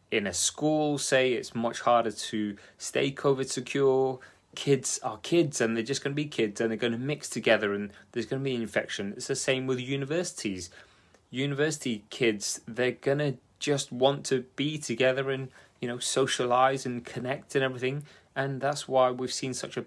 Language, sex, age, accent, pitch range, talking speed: English, male, 30-49, British, 105-135 Hz, 195 wpm